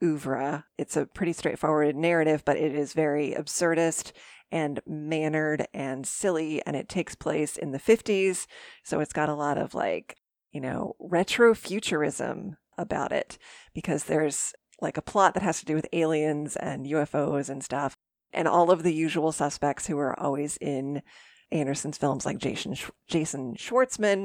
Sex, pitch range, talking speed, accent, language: female, 145-185 Hz, 165 wpm, American, English